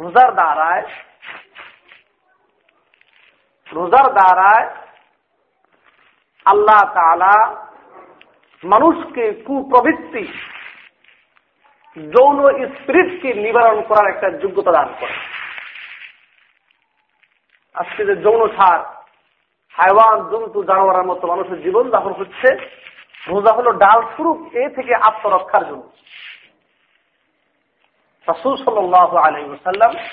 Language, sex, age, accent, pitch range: Bengali, male, 50-69, native, 180-295 Hz